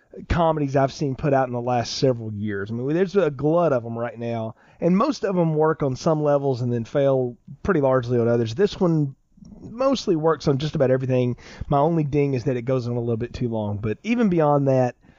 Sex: male